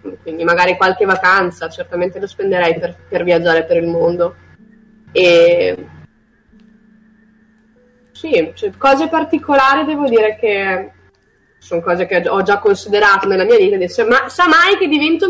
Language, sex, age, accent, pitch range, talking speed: Italian, female, 20-39, native, 180-260 Hz, 135 wpm